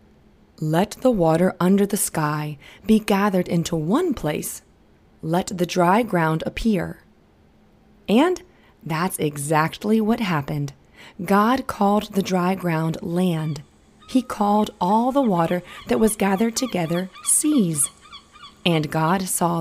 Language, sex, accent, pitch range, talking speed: English, female, American, 165-210 Hz, 120 wpm